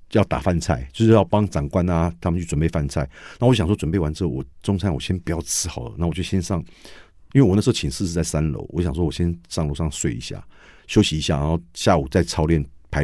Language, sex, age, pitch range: Chinese, male, 50-69, 75-95 Hz